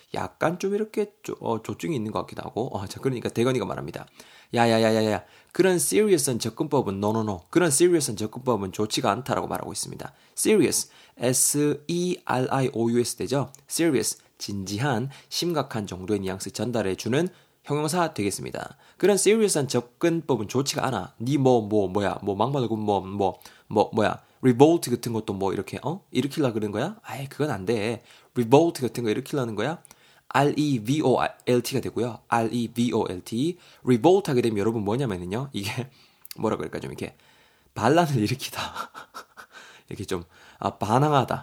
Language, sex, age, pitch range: Korean, male, 20-39, 105-140 Hz